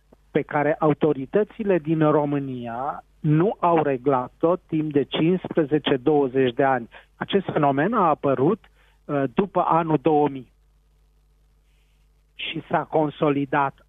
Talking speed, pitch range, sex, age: 100 wpm, 130-170 Hz, male, 40-59